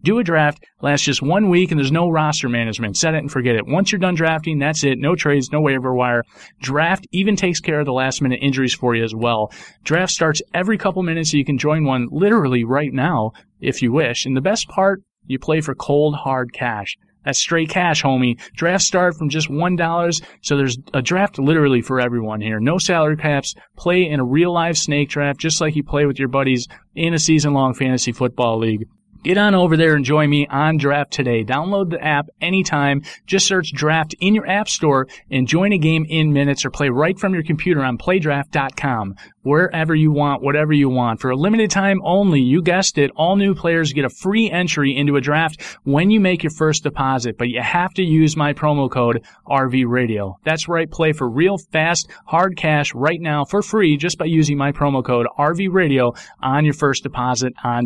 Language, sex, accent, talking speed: English, male, American, 215 wpm